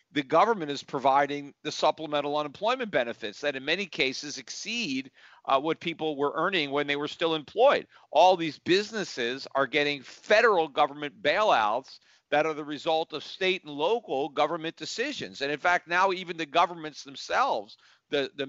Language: English